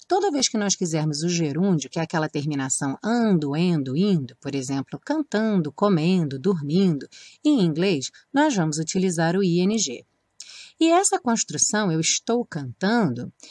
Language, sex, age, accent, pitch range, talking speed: Portuguese, female, 30-49, Brazilian, 160-250 Hz, 140 wpm